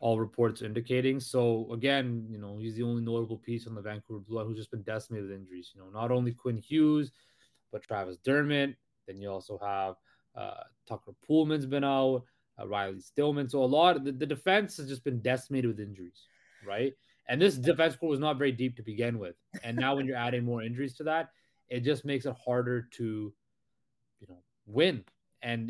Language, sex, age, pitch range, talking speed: English, male, 20-39, 115-135 Hz, 205 wpm